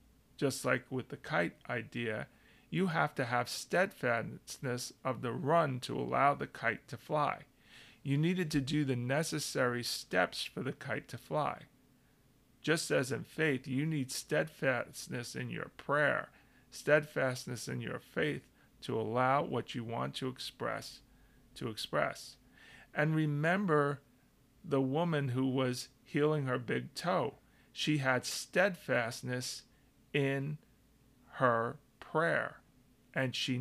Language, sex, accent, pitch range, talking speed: English, male, American, 125-150 Hz, 130 wpm